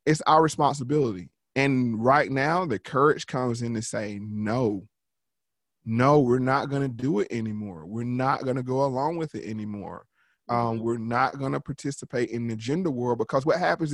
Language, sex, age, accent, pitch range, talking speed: English, male, 20-39, American, 115-150 Hz, 170 wpm